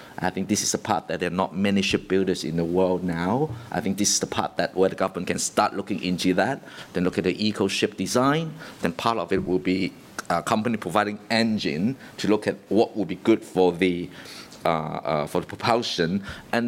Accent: Malaysian